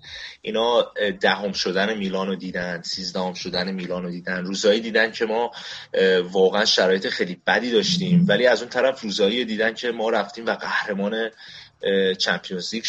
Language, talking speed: Persian, 155 wpm